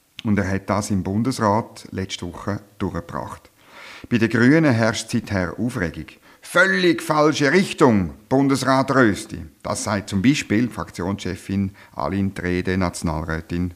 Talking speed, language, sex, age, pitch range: 120 wpm, German, male, 50-69, 95-130 Hz